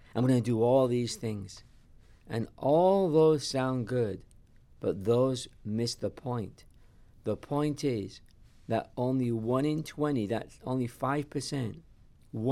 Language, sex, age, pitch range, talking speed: English, male, 50-69, 110-130 Hz, 135 wpm